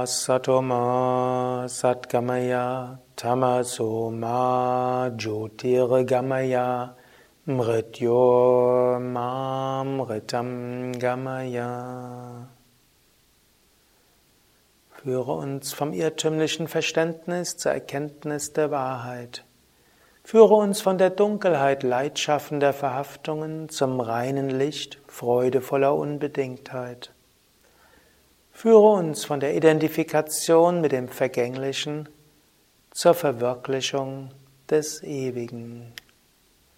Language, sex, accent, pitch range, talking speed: German, male, German, 120-140 Hz, 60 wpm